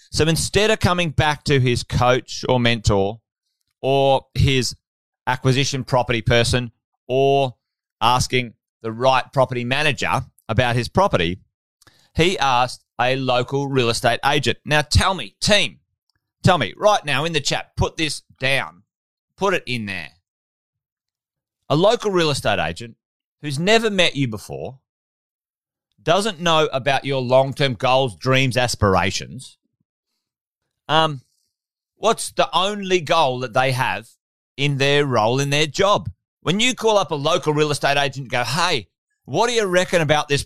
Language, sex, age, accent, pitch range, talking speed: English, male, 30-49, Australian, 125-170 Hz, 145 wpm